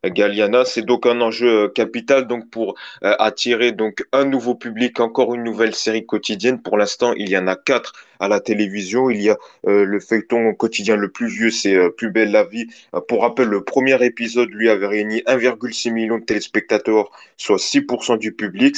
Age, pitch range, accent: 20-39, 105-120 Hz, French